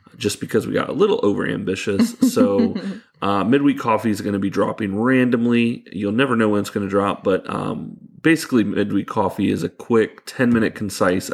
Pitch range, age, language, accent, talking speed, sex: 100-115 Hz, 30-49, English, American, 185 wpm, male